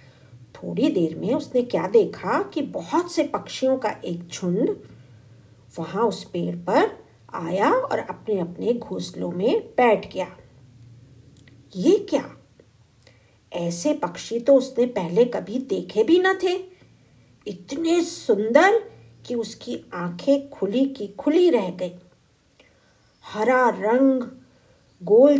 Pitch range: 180-285 Hz